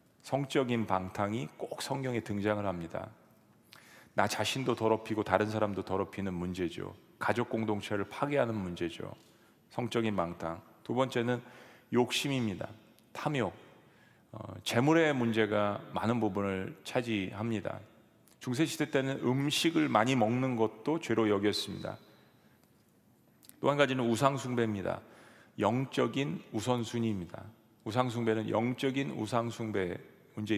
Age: 40-59